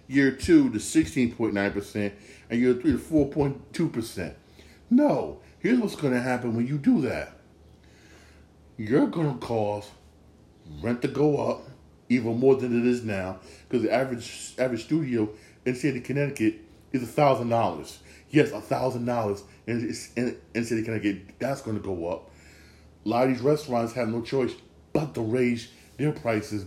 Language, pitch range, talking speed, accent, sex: English, 105-145 Hz, 170 wpm, American, male